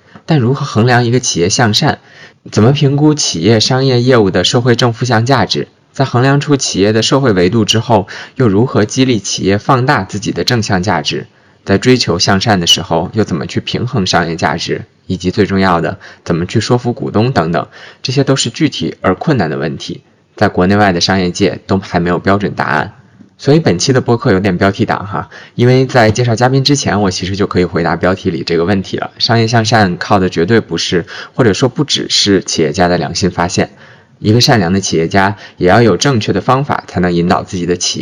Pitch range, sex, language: 90-125 Hz, male, Chinese